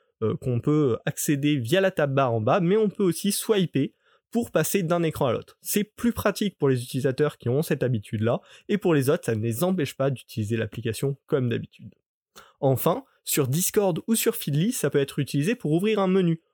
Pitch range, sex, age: 135-190 Hz, male, 20-39